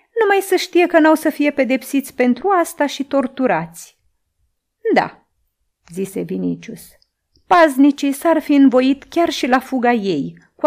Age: 30-49